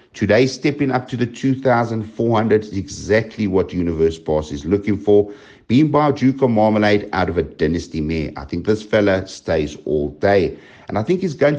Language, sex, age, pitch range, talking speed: English, male, 60-79, 85-115 Hz, 205 wpm